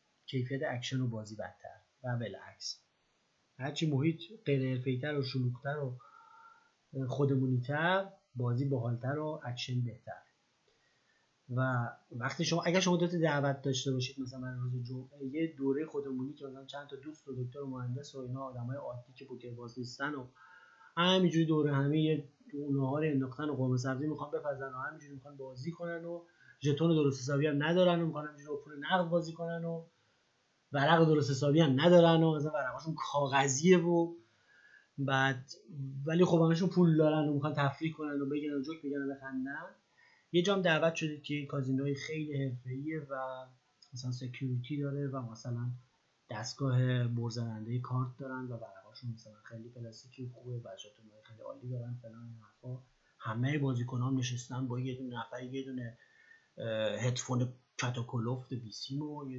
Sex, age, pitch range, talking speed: male, 30-49, 125-150 Hz, 145 wpm